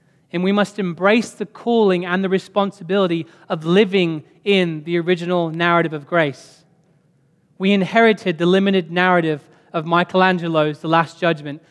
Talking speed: 140 wpm